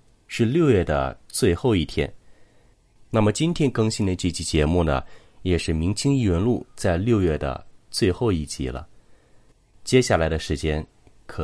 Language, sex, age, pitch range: Chinese, male, 30-49, 75-110 Hz